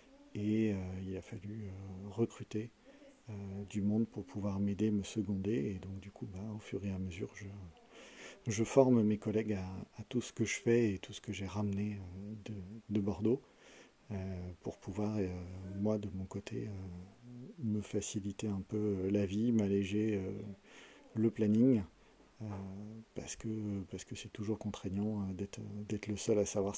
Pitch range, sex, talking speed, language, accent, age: 100-115 Hz, male, 175 wpm, French, French, 40-59